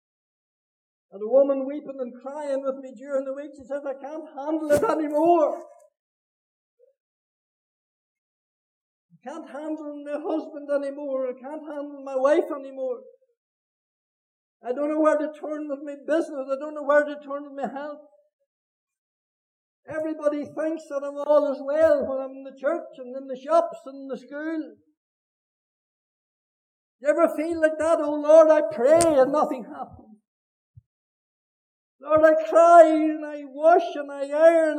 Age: 60-79